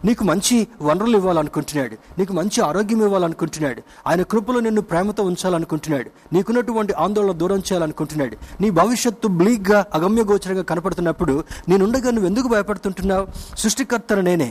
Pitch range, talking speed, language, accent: 165-220 Hz, 110 wpm, Telugu, native